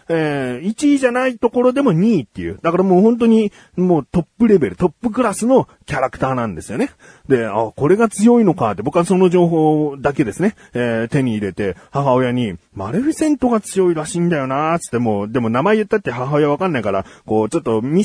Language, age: Japanese, 40-59